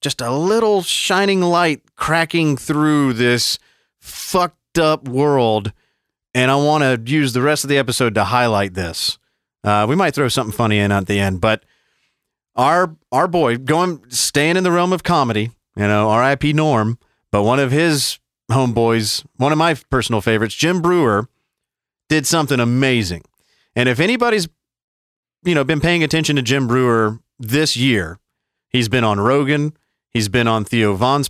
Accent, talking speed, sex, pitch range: American, 165 wpm, male, 110-155 Hz